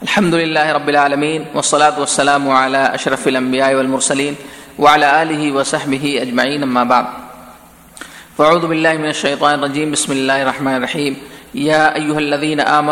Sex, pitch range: male, 135-150 Hz